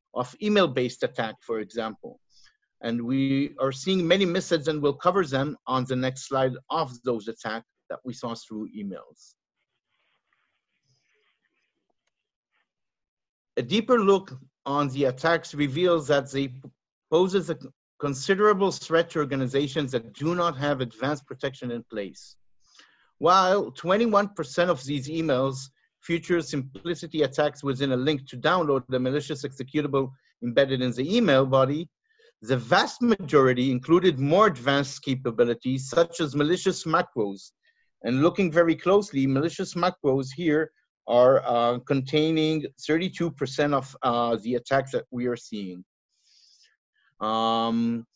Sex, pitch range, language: male, 130-170 Hz, English